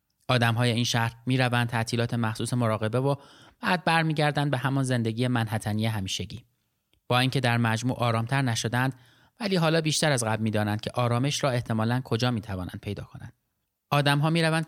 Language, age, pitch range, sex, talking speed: Persian, 30-49, 115-145 Hz, male, 155 wpm